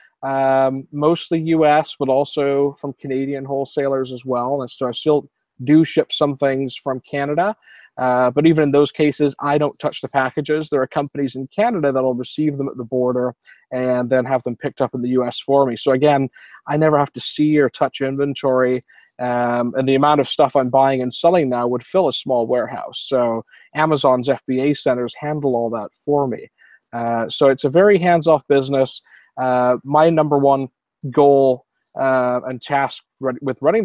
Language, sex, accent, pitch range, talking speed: English, male, American, 125-140 Hz, 190 wpm